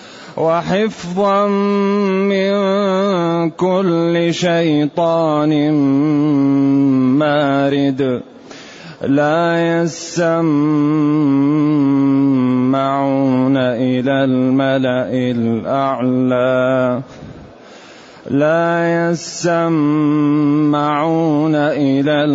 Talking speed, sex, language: 35 wpm, male, Arabic